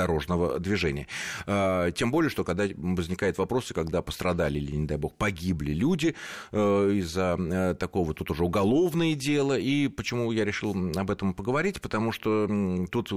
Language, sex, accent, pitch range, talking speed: Russian, male, native, 85-120 Hz, 145 wpm